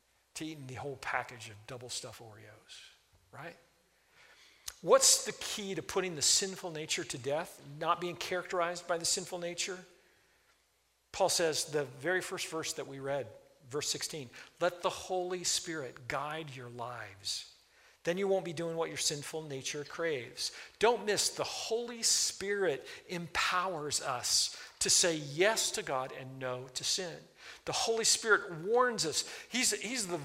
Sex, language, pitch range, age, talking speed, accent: male, English, 160-210 Hz, 50-69, 155 wpm, American